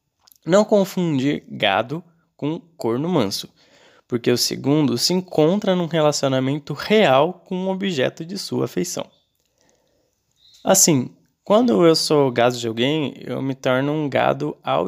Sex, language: male, Portuguese